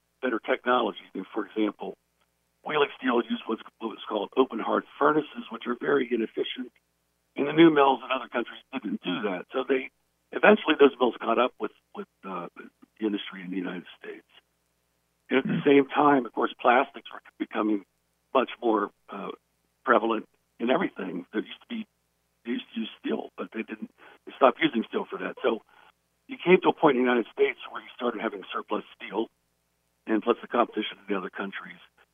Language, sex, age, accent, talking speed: English, male, 60-79, American, 195 wpm